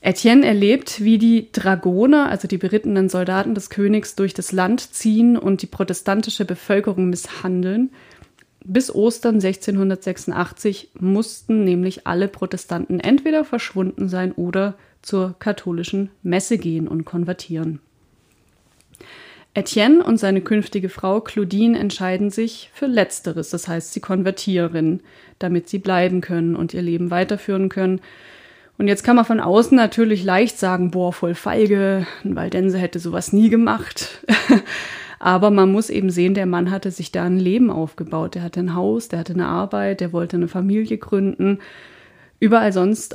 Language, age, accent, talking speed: German, 30-49, German, 145 wpm